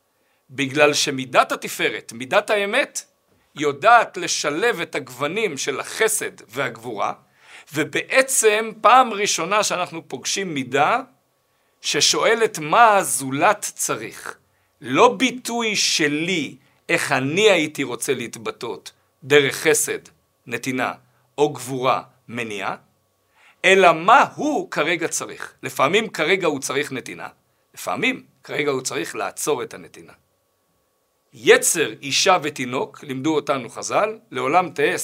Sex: male